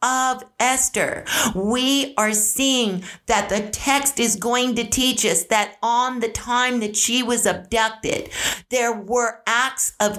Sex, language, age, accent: female, English, 50-69, American